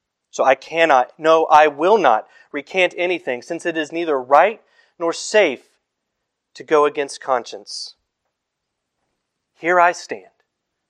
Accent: American